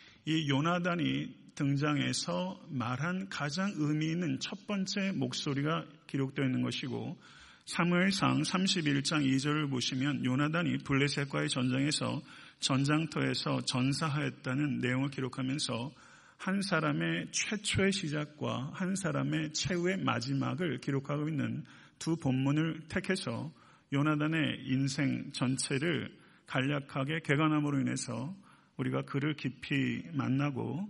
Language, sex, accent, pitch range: Korean, male, native, 135-160 Hz